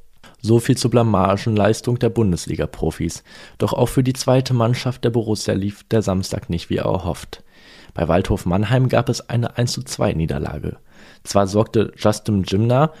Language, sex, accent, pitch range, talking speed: German, male, German, 100-125 Hz, 155 wpm